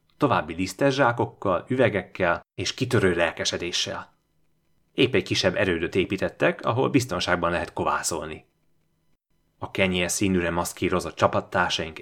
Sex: male